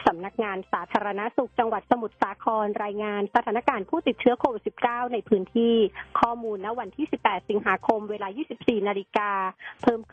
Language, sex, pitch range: Thai, female, 200-240 Hz